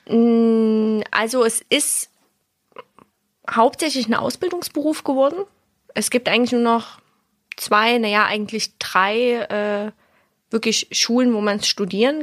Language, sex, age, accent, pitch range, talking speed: German, female, 20-39, German, 185-230 Hz, 115 wpm